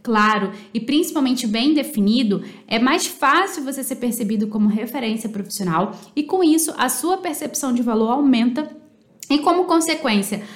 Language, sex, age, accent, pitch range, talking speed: Portuguese, female, 10-29, Brazilian, 210-295 Hz, 150 wpm